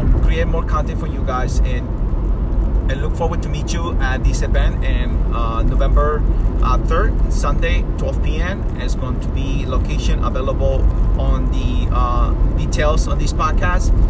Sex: male